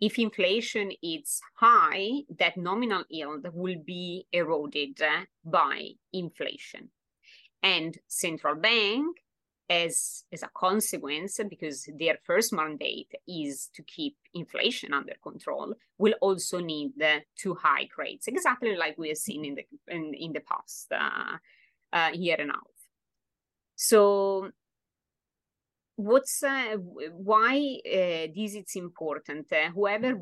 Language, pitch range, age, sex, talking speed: English, 160-215 Hz, 30-49, female, 125 wpm